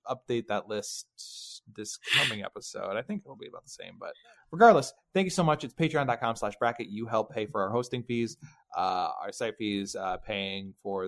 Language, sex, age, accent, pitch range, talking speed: English, male, 20-39, American, 115-170 Hz, 205 wpm